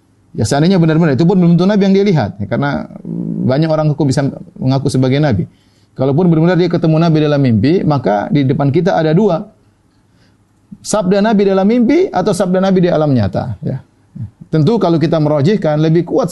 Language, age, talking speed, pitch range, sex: Indonesian, 30-49, 180 wpm, 120-175 Hz, male